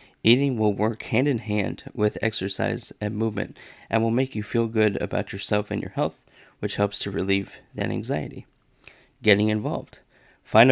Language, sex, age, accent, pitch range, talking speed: English, male, 30-49, American, 105-115 Hz, 155 wpm